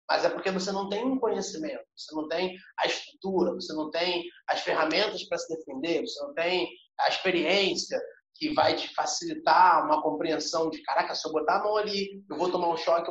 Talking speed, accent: 205 wpm, Brazilian